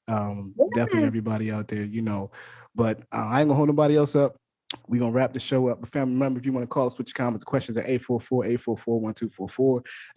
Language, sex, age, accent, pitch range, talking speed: English, male, 20-39, American, 110-145 Hz, 220 wpm